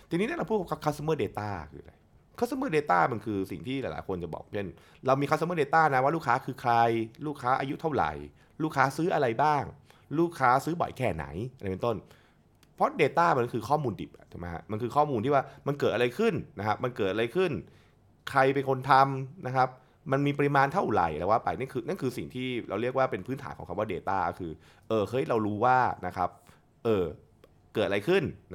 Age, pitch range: 20-39, 100-135 Hz